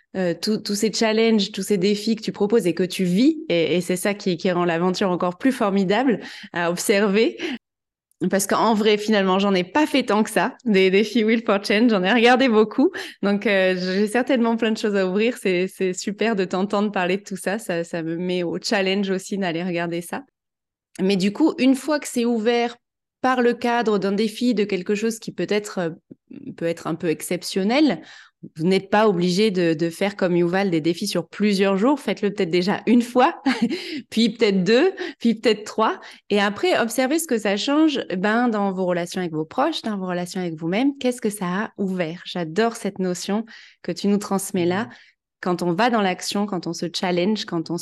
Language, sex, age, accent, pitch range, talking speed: French, female, 20-39, French, 185-230 Hz, 205 wpm